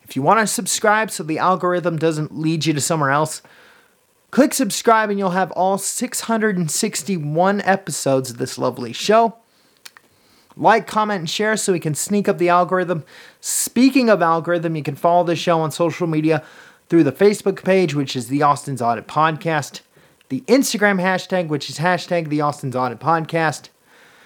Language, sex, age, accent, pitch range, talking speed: English, male, 30-49, American, 140-185 Hz, 170 wpm